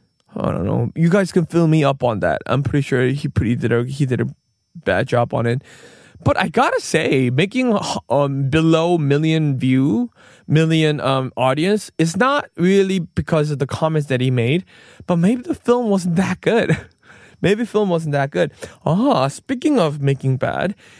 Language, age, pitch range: Korean, 20-39, 145-210 Hz